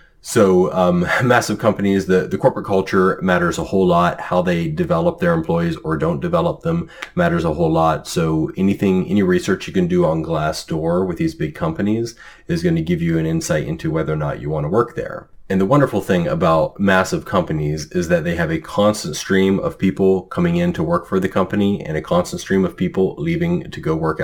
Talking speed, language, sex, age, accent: 215 wpm, English, male, 30-49, American